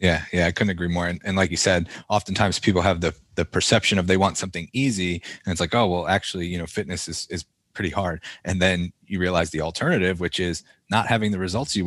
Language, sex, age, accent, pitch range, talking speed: English, male, 20-39, American, 85-105 Hz, 245 wpm